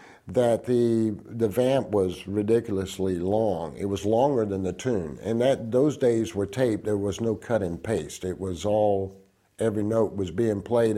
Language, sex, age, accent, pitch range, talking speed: English, male, 50-69, American, 100-135 Hz, 180 wpm